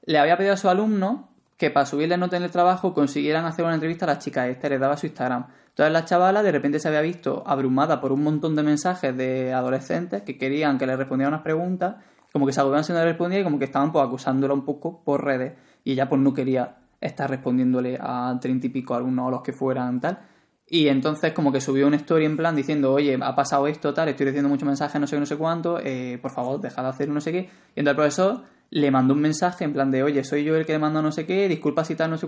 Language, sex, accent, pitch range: Spanish, male, Spanish, 140-170 Hz